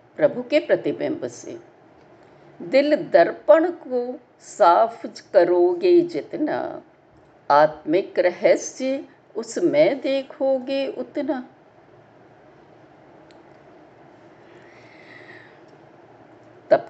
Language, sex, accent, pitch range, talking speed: Hindi, female, native, 245-325 Hz, 55 wpm